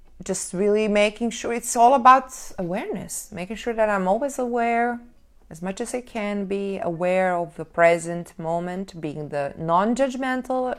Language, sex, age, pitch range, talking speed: English, female, 20-39, 165-215 Hz, 155 wpm